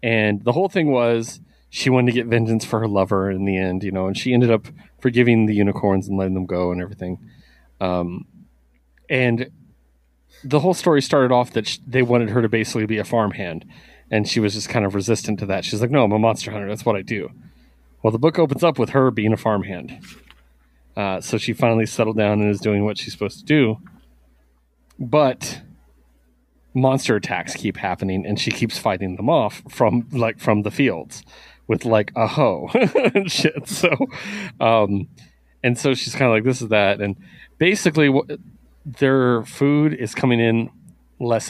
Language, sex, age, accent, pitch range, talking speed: English, male, 30-49, American, 95-125 Hz, 190 wpm